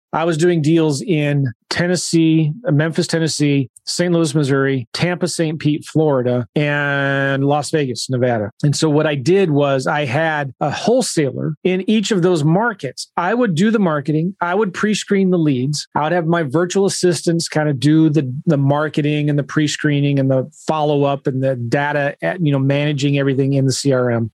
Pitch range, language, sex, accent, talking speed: 140-175 Hz, English, male, American, 180 wpm